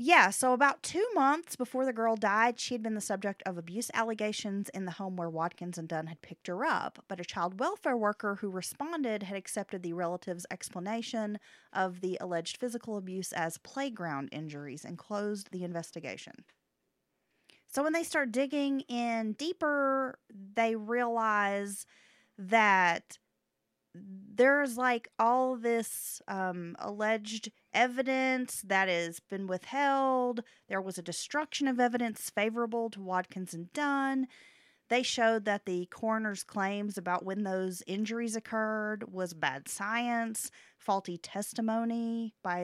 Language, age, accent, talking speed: English, 30-49, American, 140 wpm